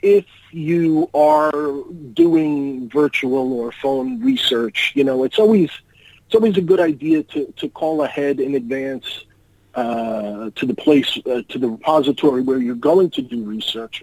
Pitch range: 120-145 Hz